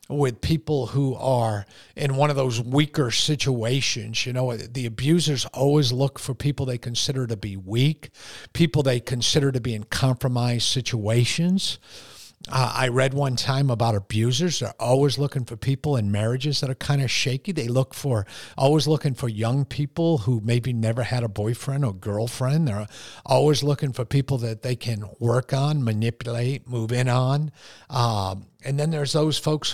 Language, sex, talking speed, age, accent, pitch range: English, male, 175 wpm, 50-69, American, 115-145 Hz